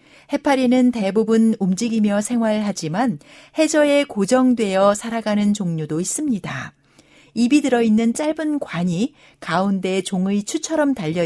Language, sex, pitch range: Korean, female, 180-250 Hz